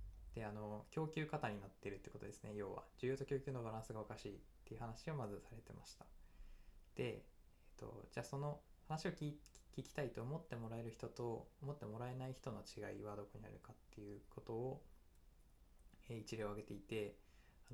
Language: Japanese